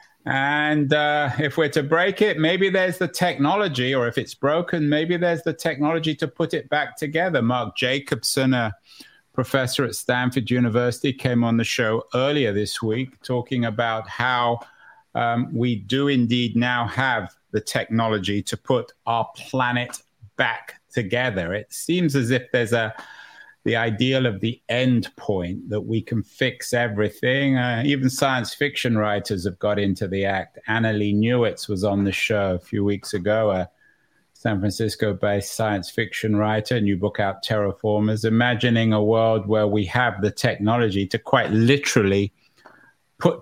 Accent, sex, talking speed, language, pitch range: British, male, 160 wpm, English, 105-140 Hz